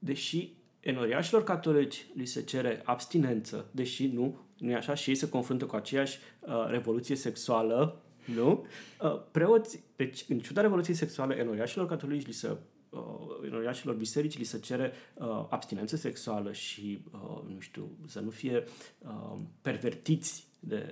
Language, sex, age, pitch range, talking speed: Romanian, male, 30-49, 115-155 Hz, 150 wpm